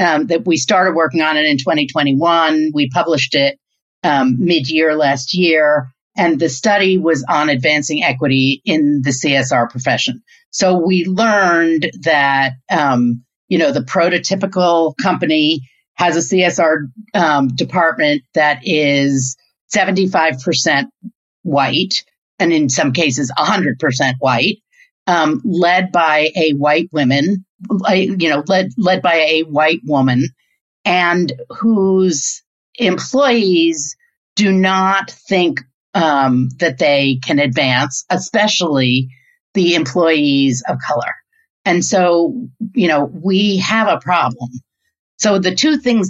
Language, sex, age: English, female, 50-69